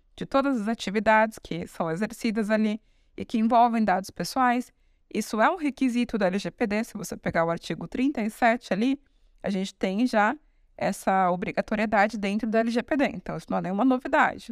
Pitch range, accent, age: 195-255 Hz, Brazilian, 20-39